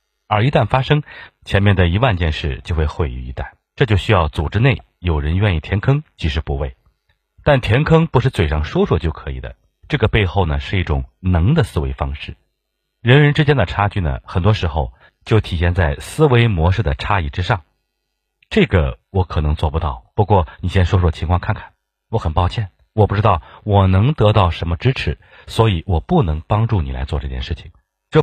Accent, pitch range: native, 80-110 Hz